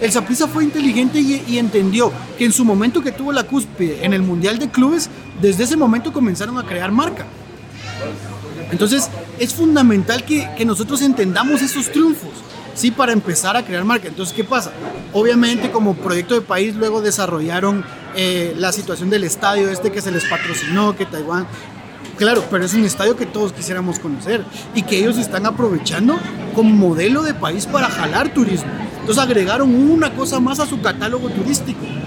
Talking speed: 175 wpm